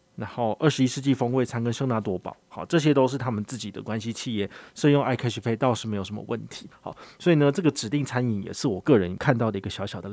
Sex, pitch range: male, 105-145 Hz